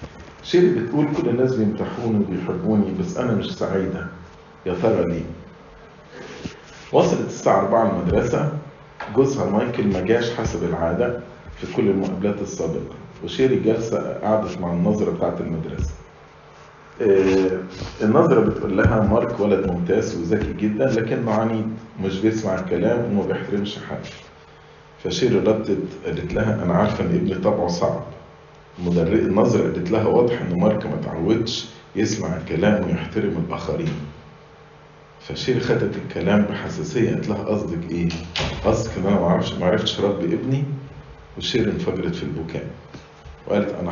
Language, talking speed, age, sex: English, 130 wpm, 40-59, male